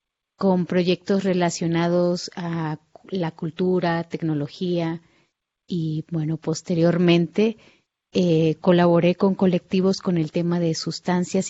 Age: 30-49